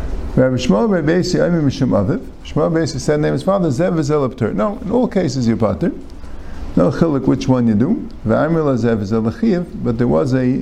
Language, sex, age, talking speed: English, male, 50-69, 175 wpm